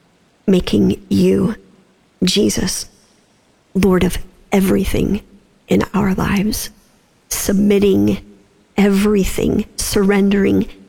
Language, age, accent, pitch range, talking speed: English, 40-59, American, 175-200 Hz, 65 wpm